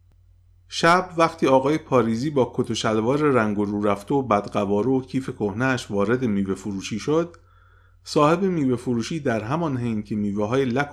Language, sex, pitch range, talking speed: Persian, male, 95-130 Hz, 165 wpm